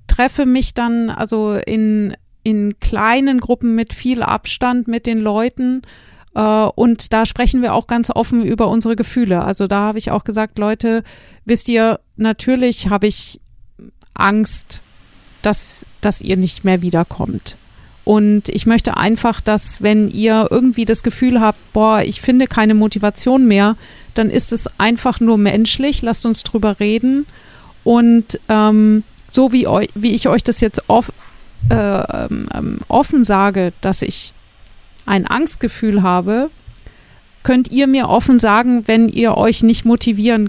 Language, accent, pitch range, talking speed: German, German, 210-240 Hz, 145 wpm